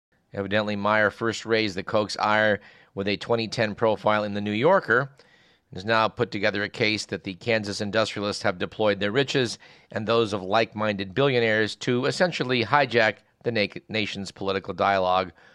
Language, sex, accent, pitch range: English, male, American, 100-125 Hz